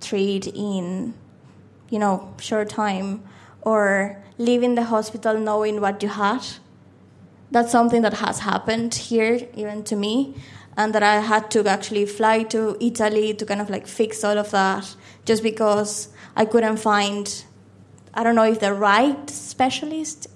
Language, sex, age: English, female, 20-39